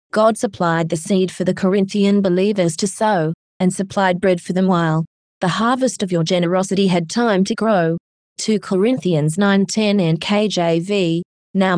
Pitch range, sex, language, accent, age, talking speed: 175-210 Hz, female, English, Australian, 20-39, 165 wpm